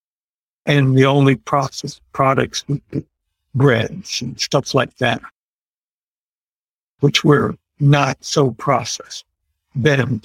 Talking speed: 95 wpm